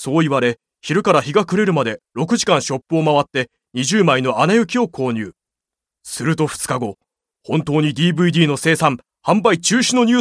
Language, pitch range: Japanese, 130-195 Hz